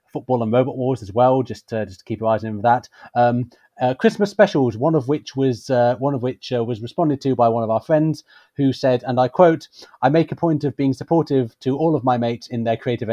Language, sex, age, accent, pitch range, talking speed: English, male, 30-49, British, 115-135 Hz, 265 wpm